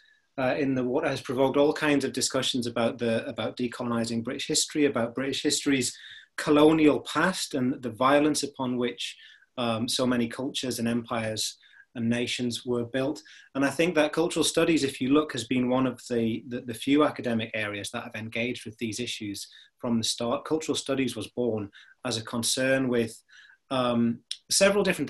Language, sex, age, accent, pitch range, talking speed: English, male, 30-49, British, 120-160 Hz, 180 wpm